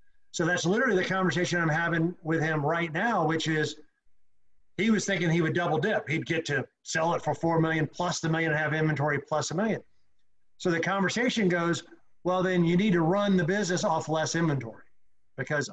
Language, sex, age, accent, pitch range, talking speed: English, male, 50-69, American, 155-195 Hz, 205 wpm